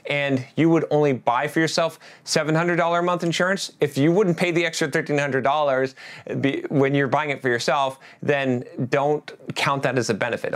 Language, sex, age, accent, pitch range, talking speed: English, male, 30-49, American, 130-165 Hz, 175 wpm